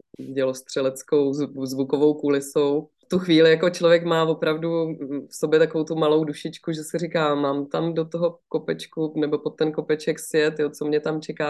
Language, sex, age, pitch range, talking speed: Slovak, female, 30-49, 140-165 Hz, 170 wpm